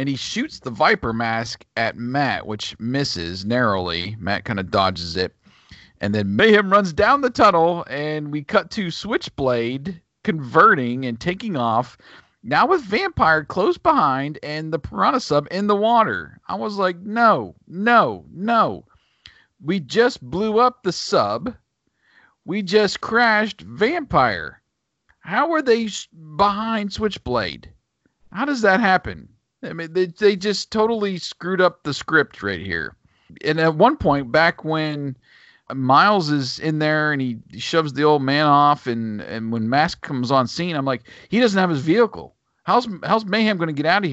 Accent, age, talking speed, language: American, 40-59, 165 wpm, English